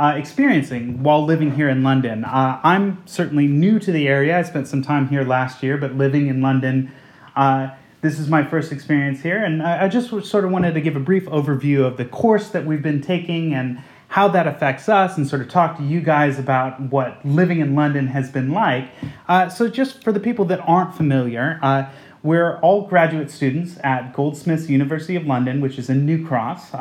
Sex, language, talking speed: male, English, 210 wpm